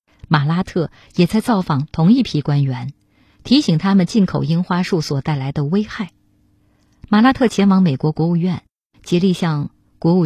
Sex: female